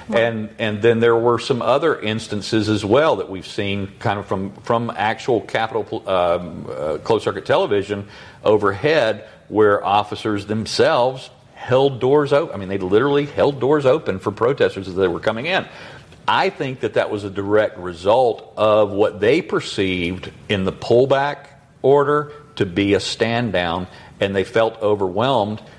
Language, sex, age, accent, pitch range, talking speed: English, male, 50-69, American, 95-125 Hz, 155 wpm